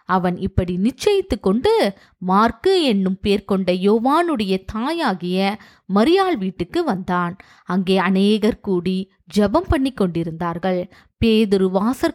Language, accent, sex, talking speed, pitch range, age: Tamil, native, female, 95 wpm, 185-250 Hz, 20-39